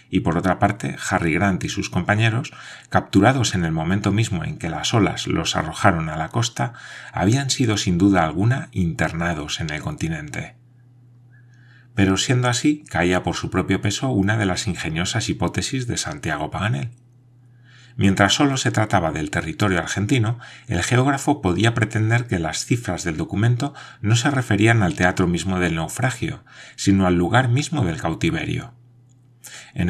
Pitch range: 90-125 Hz